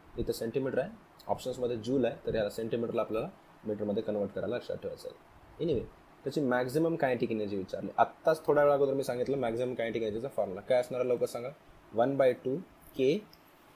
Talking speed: 160 wpm